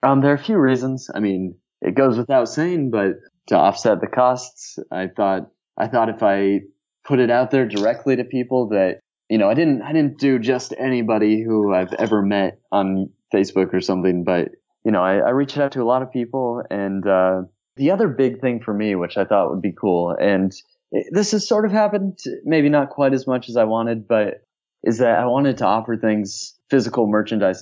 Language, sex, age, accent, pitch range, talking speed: English, male, 20-39, American, 100-130 Hz, 215 wpm